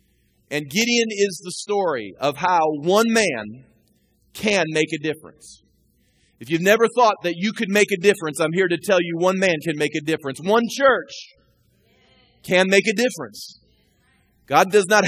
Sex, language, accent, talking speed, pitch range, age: male, English, American, 170 wpm, 165-215 Hz, 40-59